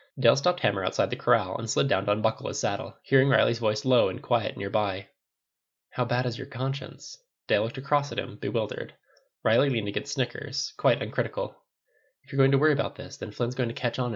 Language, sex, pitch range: English, male, 105-140 Hz